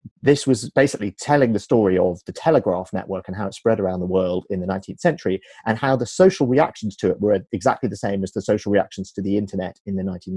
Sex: male